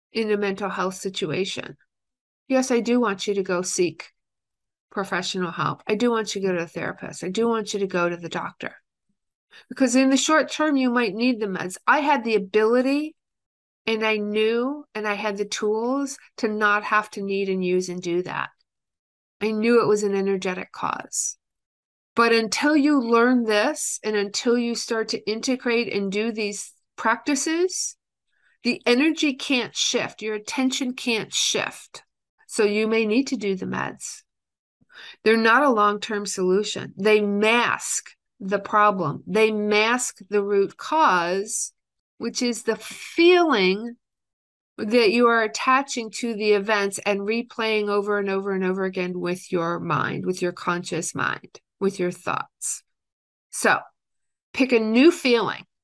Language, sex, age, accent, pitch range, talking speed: English, female, 50-69, American, 195-240 Hz, 165 wpm